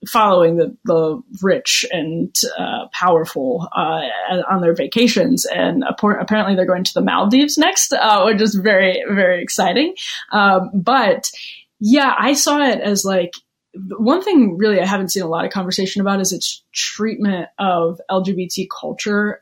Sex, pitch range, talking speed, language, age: female, 185-215 Hz, 160 wpm, English, 20-39